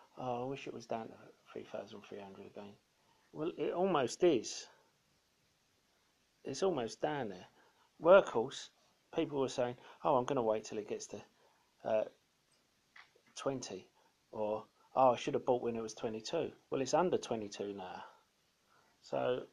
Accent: British